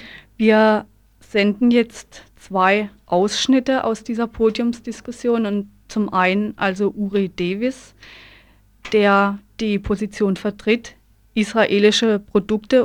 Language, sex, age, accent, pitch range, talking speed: German, female, 30-49, German, 200-230 Hz, 95 wpm